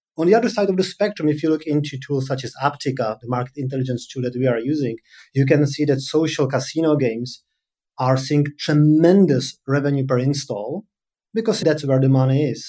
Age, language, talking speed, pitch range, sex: 30-49, English, 200 wpm, 130-155 Hz, male